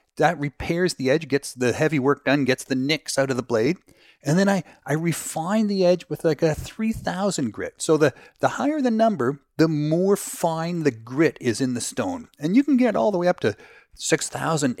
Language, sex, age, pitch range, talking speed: English, male, 40-59, 130-180 Hz, 215 wpm